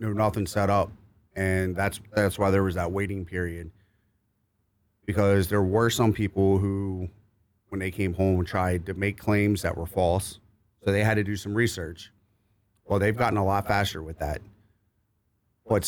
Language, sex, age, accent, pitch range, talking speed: English, male, 30-49, American, 95-105 Hz, 175 wpm